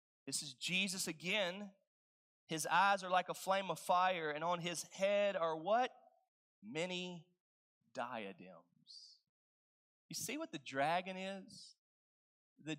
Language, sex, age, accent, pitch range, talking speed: English, male, 30-49, American, 155-225 Hz, 125 wpm